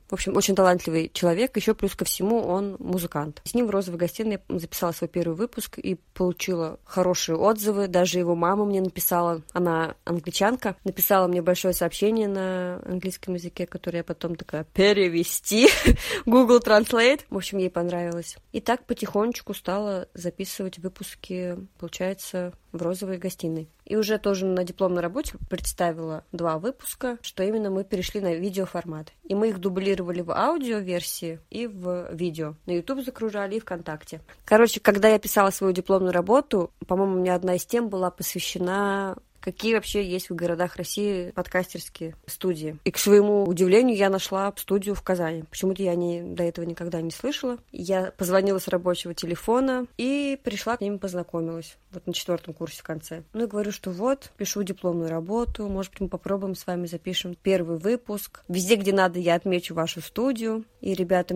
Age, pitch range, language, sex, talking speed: 20-39, 175-205 Hz, Russian, female, 170 wpm